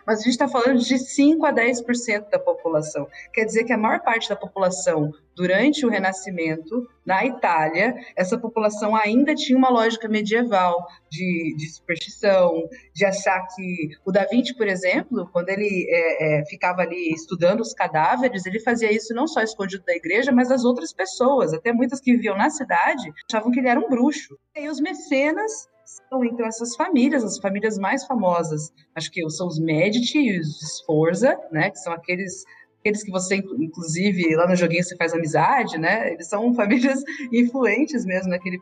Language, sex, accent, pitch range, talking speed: Portuguese, female, Brazilian, 180-260 Hz, 175 wpm